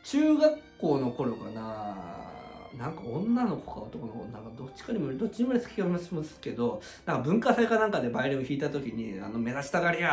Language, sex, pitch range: Japanese, male, 115-175 Hz